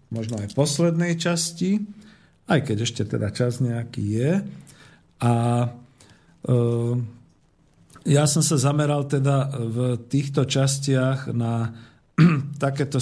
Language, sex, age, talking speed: Slovak, male, 50-69, 115 wpm